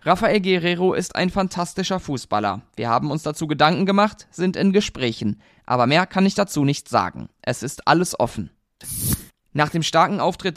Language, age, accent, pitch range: German, 20-39, German, 130-205 Hz